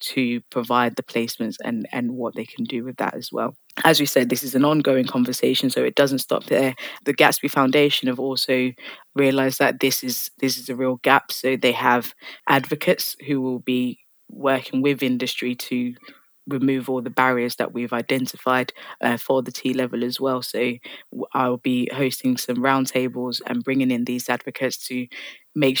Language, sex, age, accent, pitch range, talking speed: English, female, 20-39, British, 125-135 Hz, 180 wpm